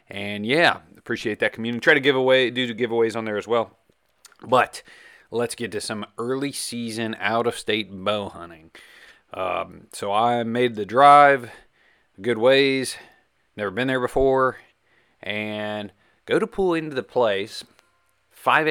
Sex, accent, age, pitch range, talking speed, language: male, American, 30-49, 100-120 Hz, 150 wpm, English